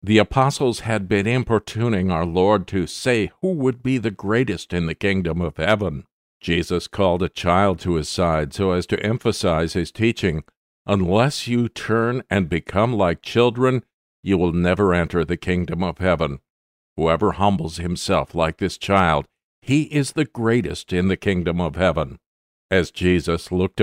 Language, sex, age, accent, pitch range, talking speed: English, male, 50-69, American, 85-110 Hz, 165 wpm